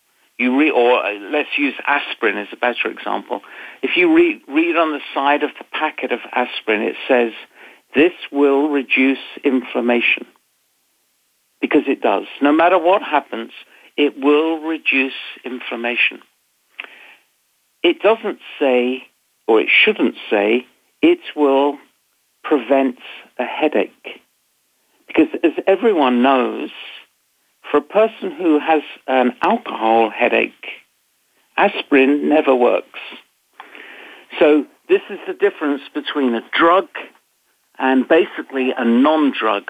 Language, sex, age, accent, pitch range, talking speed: English, male, 60-79, British, 125-205 Hz, 115 wpm